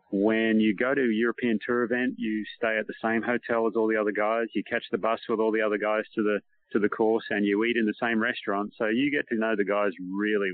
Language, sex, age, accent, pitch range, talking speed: English, male, 40-59, Australian, 100-115 Hz, 275 wpm